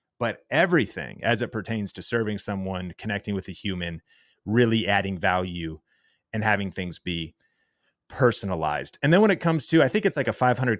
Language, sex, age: English, male, 30-49